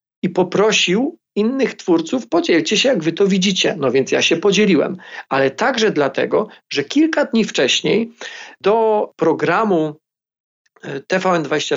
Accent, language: native, Polish